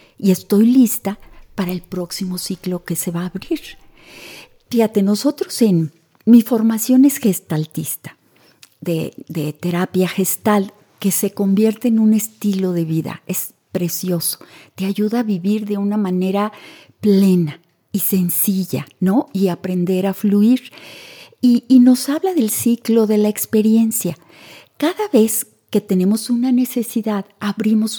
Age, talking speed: 40-59, 135 wpm